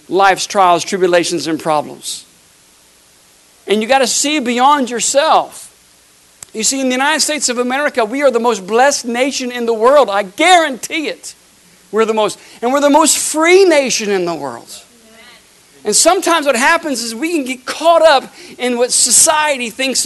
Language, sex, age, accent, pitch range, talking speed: English, male, 60-79, American, 195-275 Hz, 175 wpm